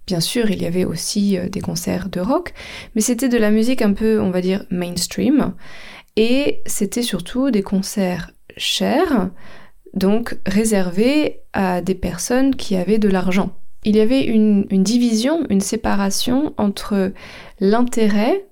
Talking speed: 150 wpm